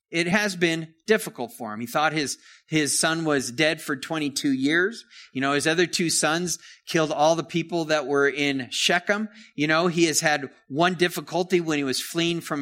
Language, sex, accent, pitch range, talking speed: English, male, American, 150-195 Hz, 200 wpm